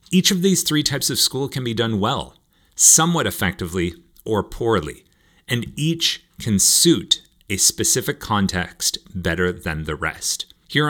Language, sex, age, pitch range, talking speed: English, male, 30-49, 95-135 Hz, 150 wpm